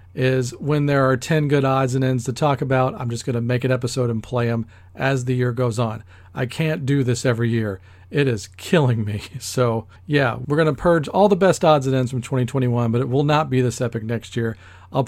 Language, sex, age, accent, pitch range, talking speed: English, male, 40-59, American, 120-145 Hz, 245 wpm